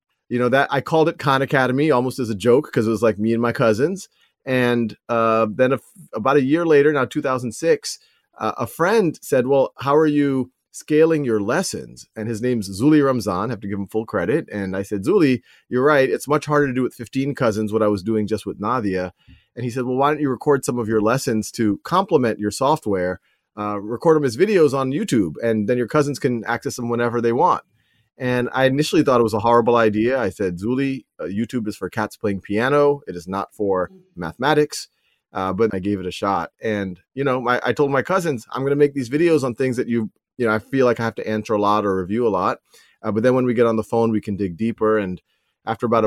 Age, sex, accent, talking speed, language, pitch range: 30-49, male, American, 245 wpm, English, 110-135 Hz